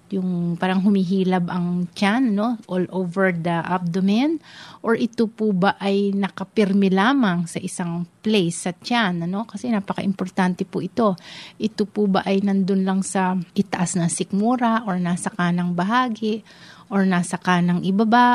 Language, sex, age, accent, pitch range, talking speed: Filipino, female, 30-49, native, 180-205 Hz, 145 wpm